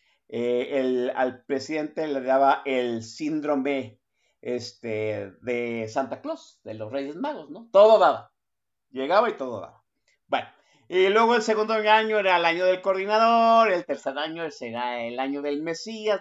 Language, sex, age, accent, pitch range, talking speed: Spanish, male, 50-69, Mexican, 125-195 Hz, 155 wpm